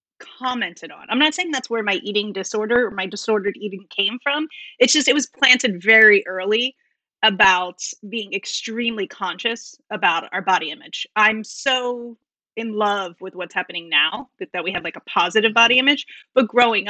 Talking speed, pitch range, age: 180 wpm, 195-250 Hz, 30-49